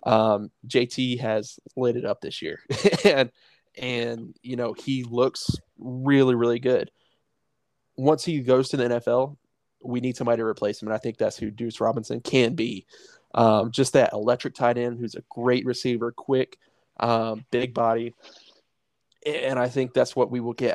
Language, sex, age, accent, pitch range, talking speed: English, male, 20-39, American, 120-135 Hz, 175 wpm